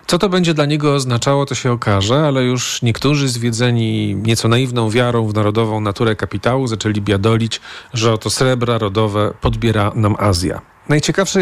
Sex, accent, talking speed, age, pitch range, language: male, native, 160 wpm, 40-59, 110-145 Hz, Polish